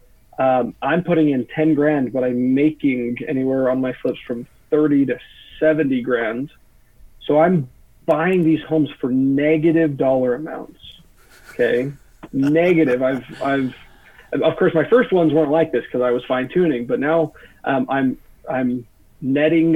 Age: 40-59